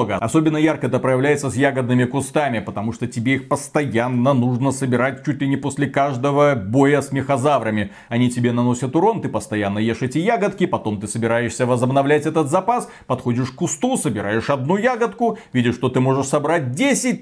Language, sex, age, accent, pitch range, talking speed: Russian, male, 30-49, native, 120-160 Hz, 170 wpm